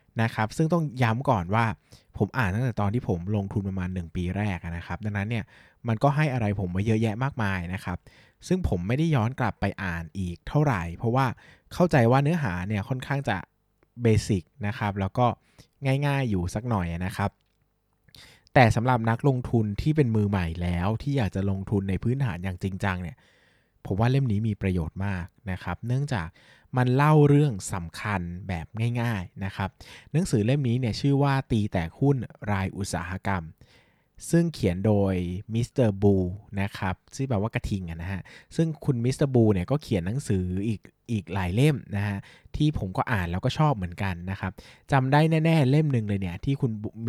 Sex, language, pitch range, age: male, Thai, 95-125 Hz, 20-39